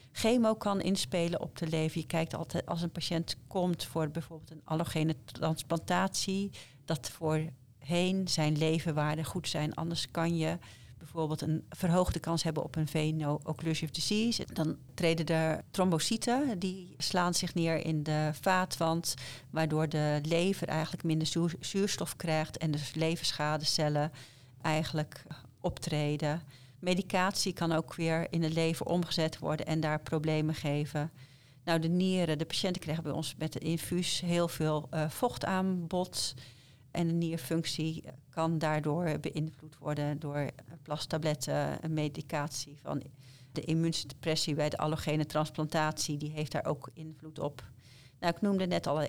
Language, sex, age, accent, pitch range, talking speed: Dutch, female, 40-59, Dutch, 150-170 Hz, 145 wpm